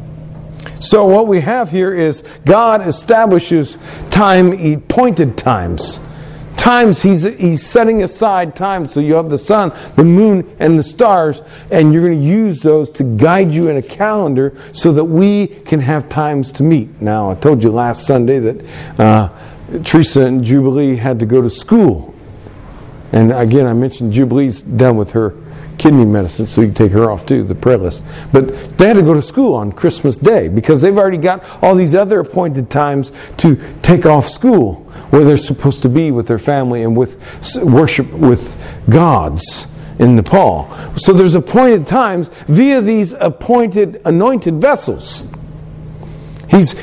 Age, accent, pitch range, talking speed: 50-69, American, 135-185 Hz, 170 wpm